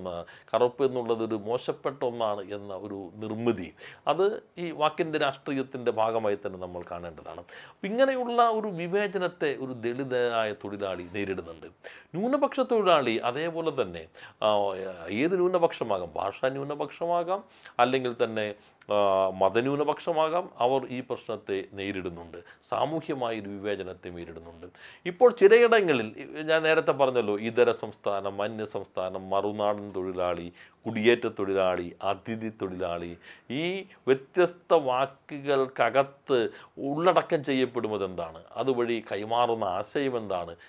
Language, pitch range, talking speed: Malayalam, 100-160 Hz, 95 wpm